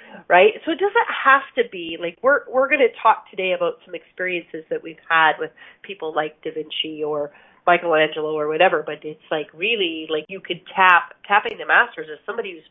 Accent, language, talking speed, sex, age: American, English, 200 wpm, female, 30-49